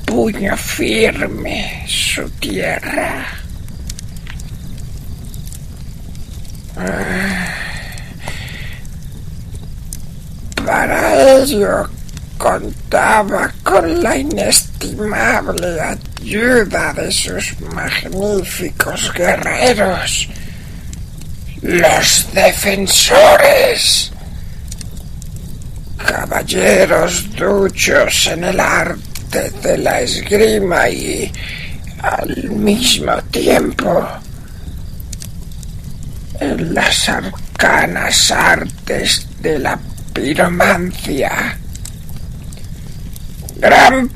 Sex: male